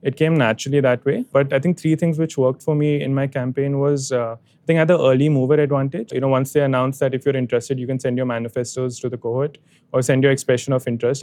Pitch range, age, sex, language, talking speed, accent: 125-150 Hz, 20-39, male, English, 260 wpm, Indian